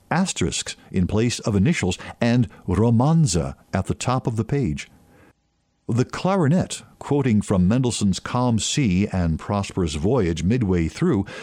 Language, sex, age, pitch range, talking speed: English, male, 50-69, 95-140 Hz, 130 wpm